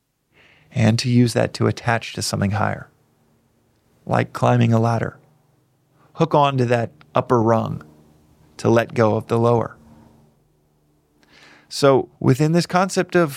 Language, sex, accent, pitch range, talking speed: English, male, American, 110-130 Hz, 135 wpm